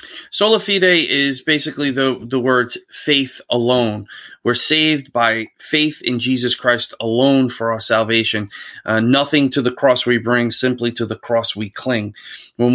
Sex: male